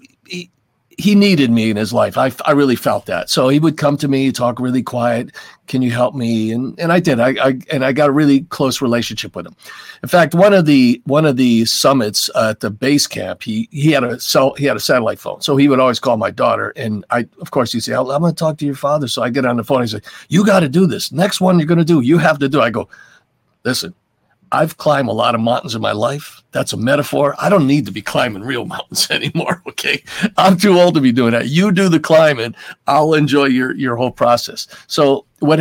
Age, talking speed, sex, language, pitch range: 50-69, 255 wpm, male, English, 115-150 Hz